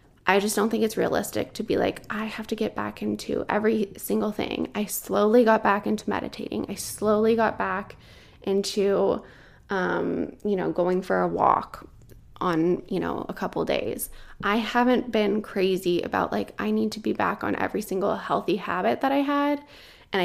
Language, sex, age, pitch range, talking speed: English, female, 20-39, 205-235 Hz, 185 wpm